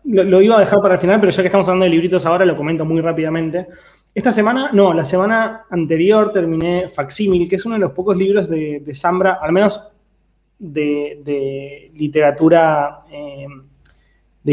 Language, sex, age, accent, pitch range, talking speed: Spanish, male, 20-39, Argentinian, 150-195 Hz, 185 wpm